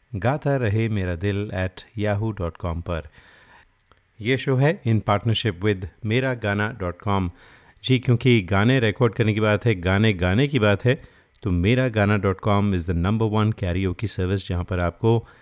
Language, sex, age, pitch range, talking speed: Hindi, male, 30-49, 95-120 Hz, 155 wpm